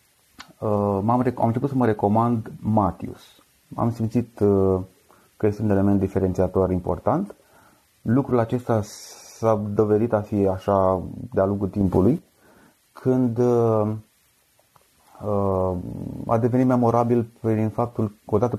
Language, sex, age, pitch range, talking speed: Romanian, male, 30-49, 95-120 Hz, 120 wpm